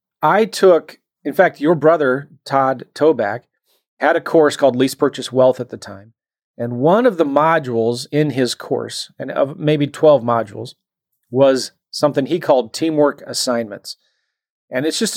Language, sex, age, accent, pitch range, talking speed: English, male, 30-49, American, 120-160 Hz, 160 wpm